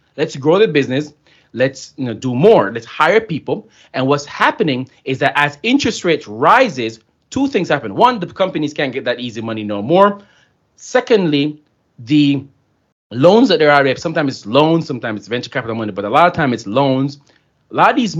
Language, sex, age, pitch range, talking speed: English, male, 30-49, 120-165 Hz, 195 wpm